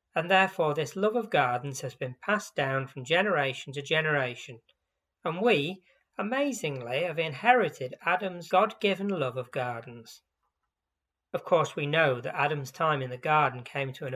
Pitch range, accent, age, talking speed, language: 130-175 Hz, British, 40-59, 155 wpm, English